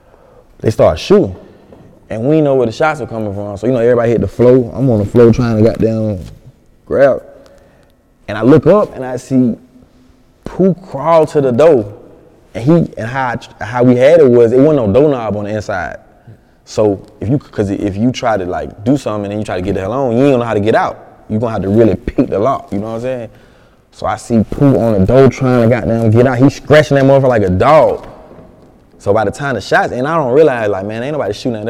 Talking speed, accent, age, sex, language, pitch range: 245 wpm, American, 20-39, male, English, 110-140 Hz